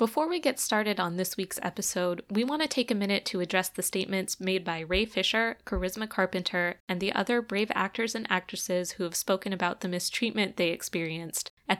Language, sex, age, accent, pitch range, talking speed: English, female, 20-39, American, 185-230 Hz, 205 wpm